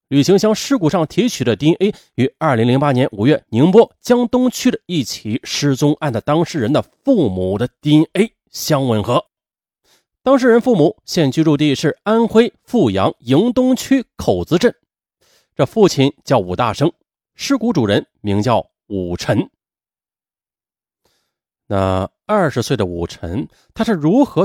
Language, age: Chinese, 30-49